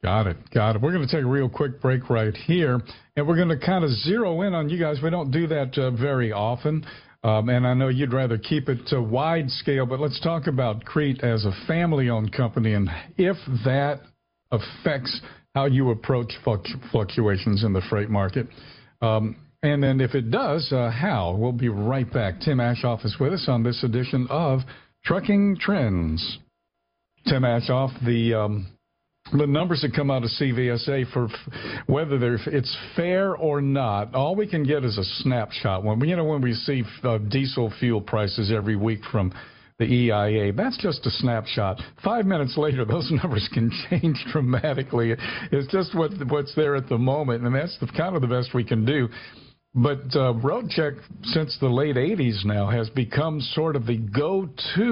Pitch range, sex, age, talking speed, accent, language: 115-150 Hz, male, 50-69, 190 wpm, American, English